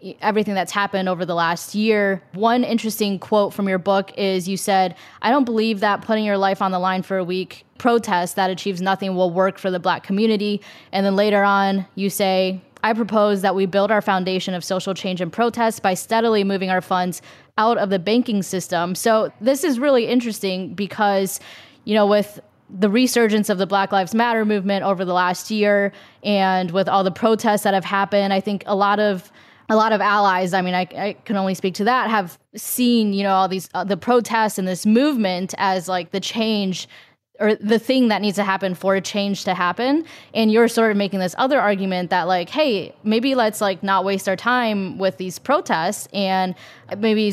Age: 10-29